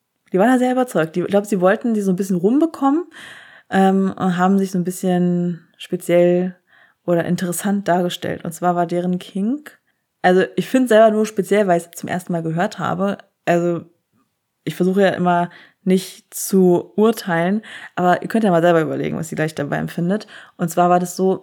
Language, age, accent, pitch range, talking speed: German, 20-39, German, 170-195 Hz, 195 wpm